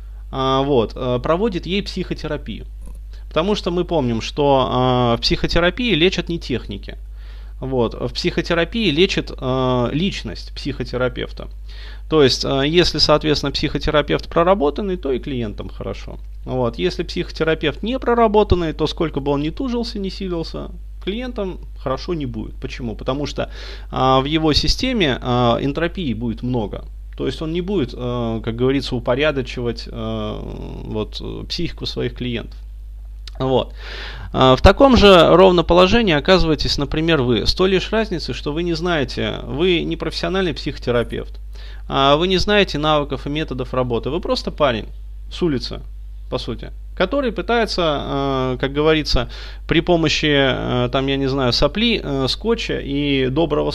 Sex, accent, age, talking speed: male, native, 20-39, 135 wpm